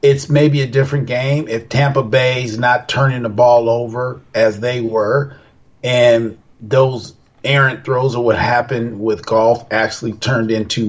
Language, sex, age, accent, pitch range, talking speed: English, male, 40-59, American, 120-150 Hz, 155 wpm